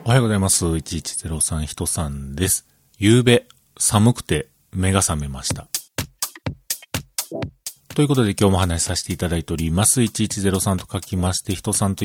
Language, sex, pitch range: Japanese, male, 95-135 Hz